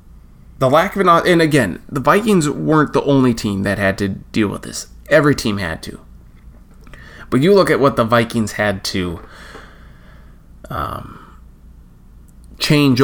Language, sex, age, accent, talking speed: English, male, 20-39, American, 150 wpm